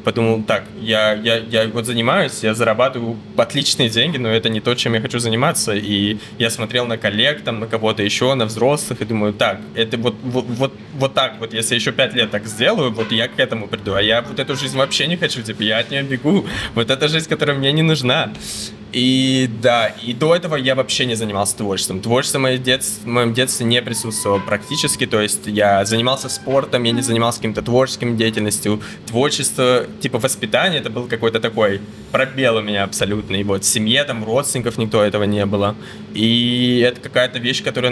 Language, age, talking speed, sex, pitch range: Russian, 20-39, 205 wpm, male, 110-130 Hz